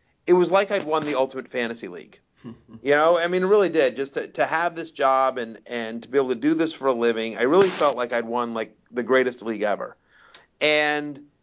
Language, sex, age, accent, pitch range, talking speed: English, male, 30-49, American, 130-175 Hz, 235 wpm